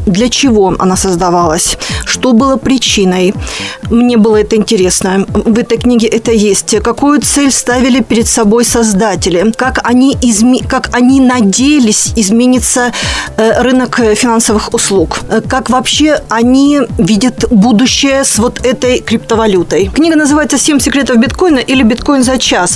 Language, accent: Russian, native